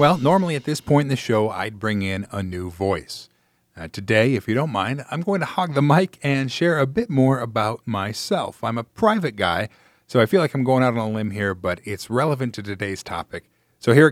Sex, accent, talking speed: male, American, 240 wpm